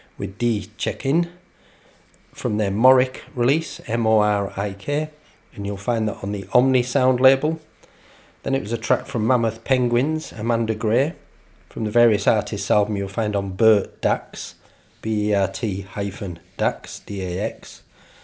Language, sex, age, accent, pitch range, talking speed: English, male, 40-59, British, 100-130 Hz, 135 wpm